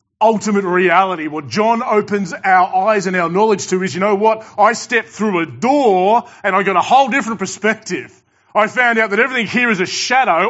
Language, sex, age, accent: English, male, 30-49, Australian